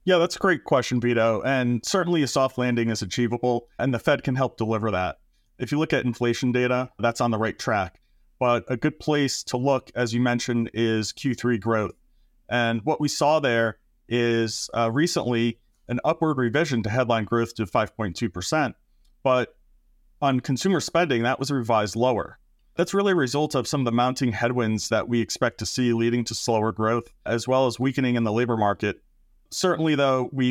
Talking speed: 195 wpm